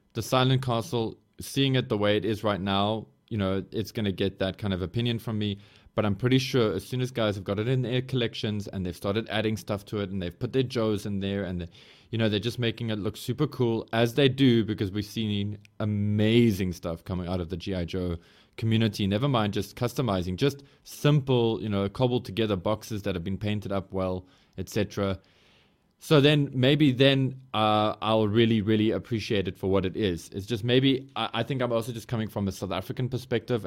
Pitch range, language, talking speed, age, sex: 95-115 Hz, English, 215 wpm, 20-39, male